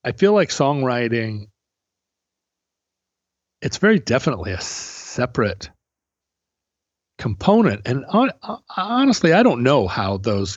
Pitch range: 95-125 Hz